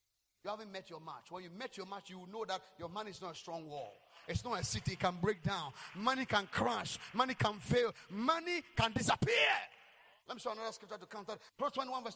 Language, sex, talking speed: English, male, 230 wpm